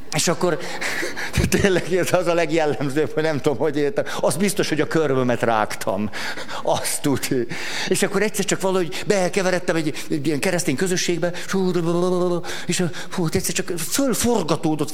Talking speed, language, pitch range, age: 140 wpm, Hungarian, 145-190 Hz, 50-69